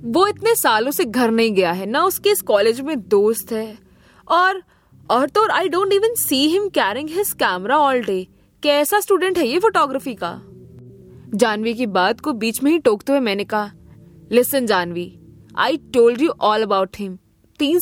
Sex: female